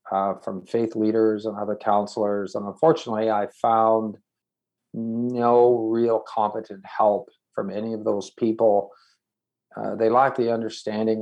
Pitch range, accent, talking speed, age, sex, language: 105-115 Hz, American, 135 wpm, 40-59, male, English